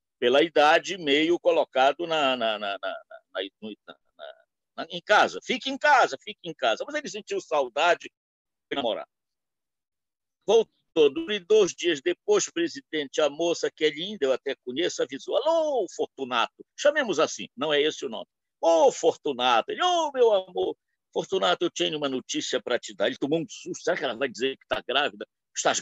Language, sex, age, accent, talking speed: Portuguese, male, 60-79, Brazilian, 160 wpm